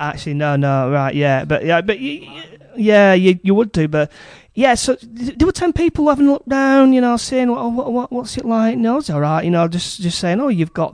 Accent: British